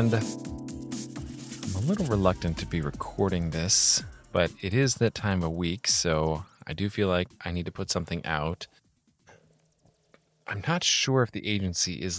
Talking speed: 160 wpm